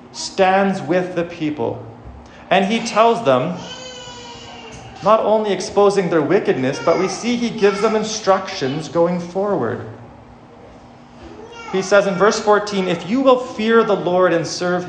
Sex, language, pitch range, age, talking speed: male, English, 145-205 Hz, 40-59, 140 wpm